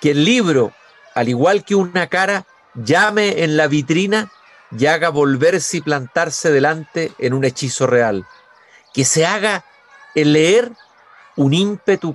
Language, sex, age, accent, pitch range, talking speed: Spanish, male, 50-69, Mexican, 145-190 Hz, 145 wpm